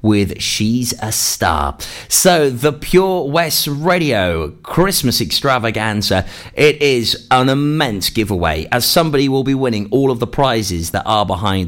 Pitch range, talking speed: 105-155 Hz, 145 wpm